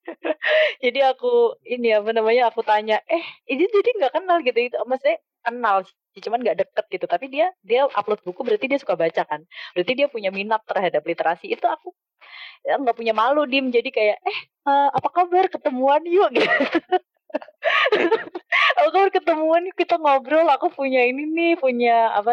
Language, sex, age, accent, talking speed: Indonesian, female, 20-39, native, 165 wpm